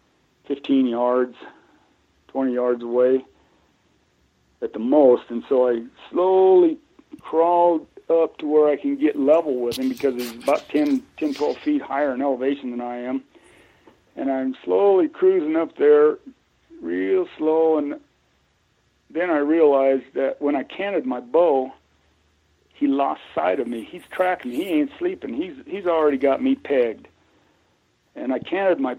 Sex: male